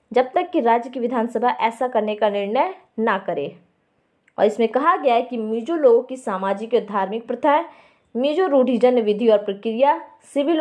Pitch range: 220-280 Hz